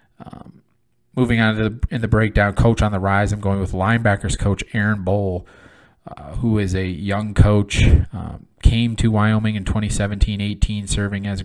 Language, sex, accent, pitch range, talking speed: English, male, American, 95-105 Hz, 170 wpm